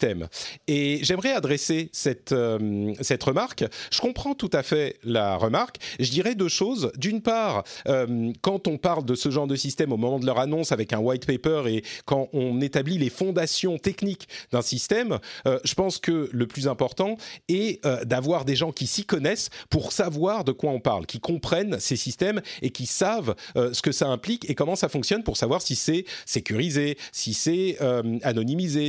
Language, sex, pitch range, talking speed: French, male, 125-180 Hz, 195 wpm